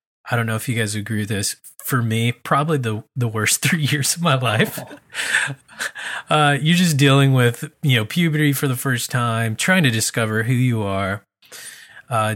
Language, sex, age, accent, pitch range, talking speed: English, male, 20-39, American, 105-130 Hz, 190 wpm